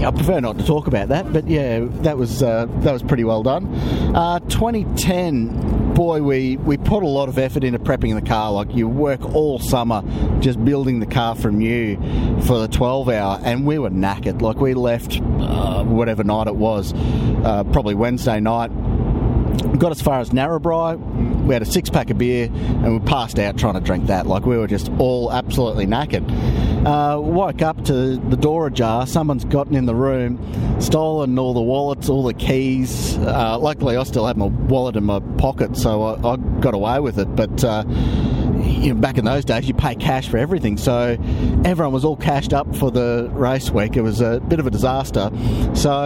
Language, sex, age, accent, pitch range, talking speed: English, male, 30-49, Australian, 115-135 Hz, 200 wpm